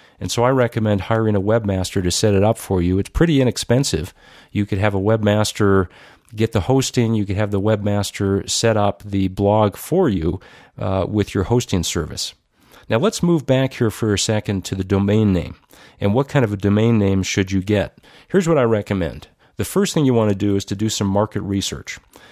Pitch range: 100-115 Hz